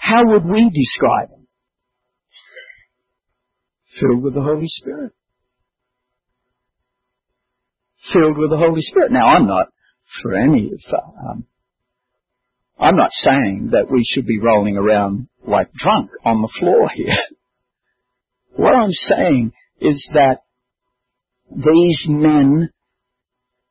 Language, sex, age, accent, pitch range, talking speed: English, male, 50-69, American, 125-170 Hz, 110 wpm